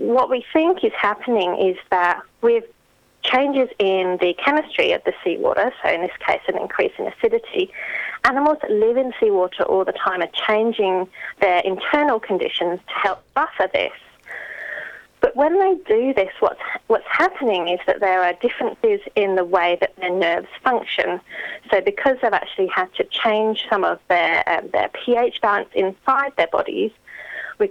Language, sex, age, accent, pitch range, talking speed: English, female, 30-49, British, 190-290 Hz, 170 wpm